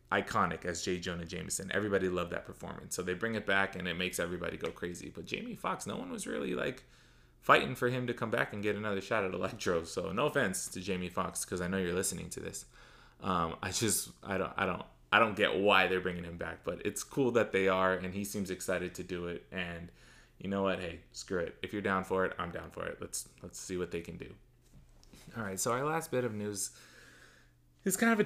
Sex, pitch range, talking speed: male, 85-105 Hz, 245 wpm